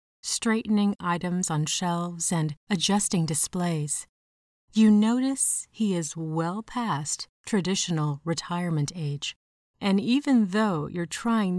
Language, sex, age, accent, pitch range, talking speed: English, female, 30-49, American, 160-210 Hz, 110 wpm